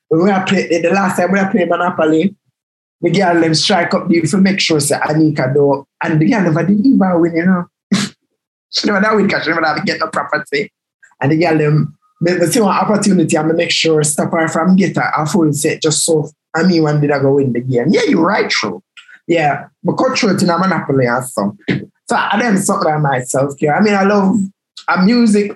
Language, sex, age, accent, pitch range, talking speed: English, male, 20-39, Jamaican, 150-190 Hz, 230 wpm